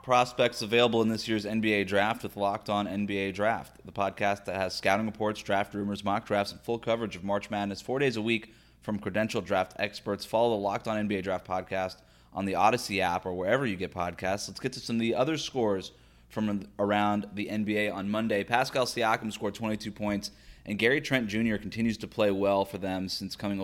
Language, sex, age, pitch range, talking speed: English, male, 20-39, 95-115 Hz, 210 wpm